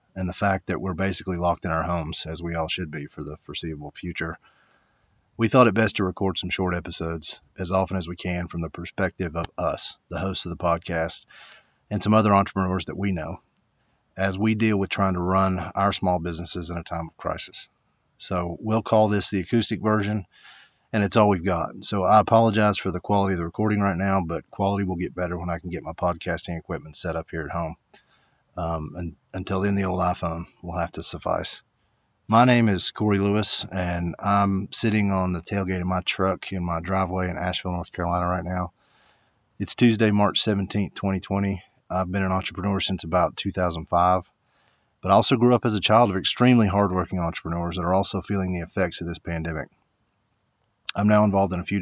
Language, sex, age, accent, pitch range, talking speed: English, male, 40-59, American, 85-100 Hz, 205 wpm